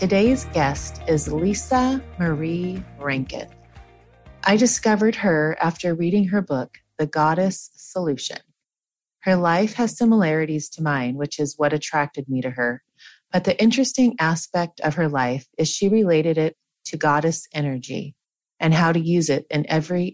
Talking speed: 150 wpm